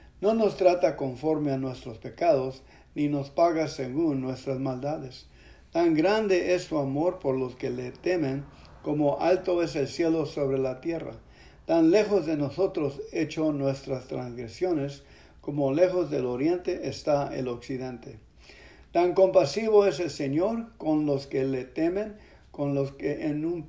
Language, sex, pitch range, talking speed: English, male, 135-180 Hz, 150 wpm